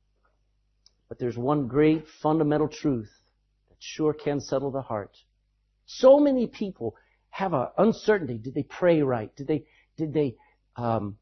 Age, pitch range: 60-79, 115-180 Hz